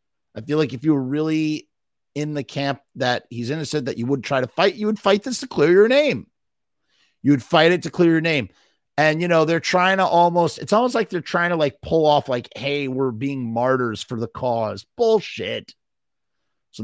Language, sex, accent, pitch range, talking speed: English, male, American, 130-175 Hz, 215 wpm